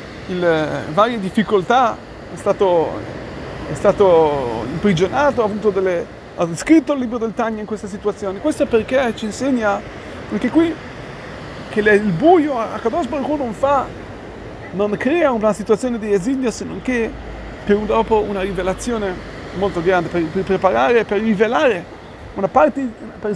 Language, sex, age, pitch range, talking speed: Italian, male, 30-49, 185-235 Hz, 140 wpm